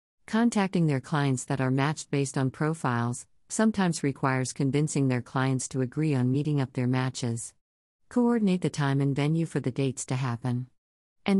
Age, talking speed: 50-69, 170 wpm